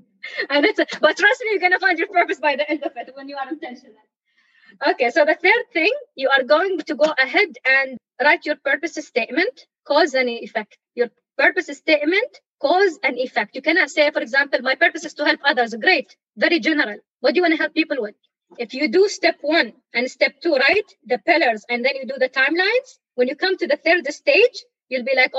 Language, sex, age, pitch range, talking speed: English, female, 20-39, 260-345 Hz, 220 wpm